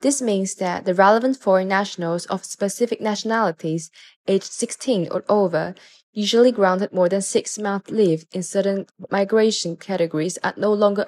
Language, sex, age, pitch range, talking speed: English, female, 10-29, 180-215 Hz, 145 wpm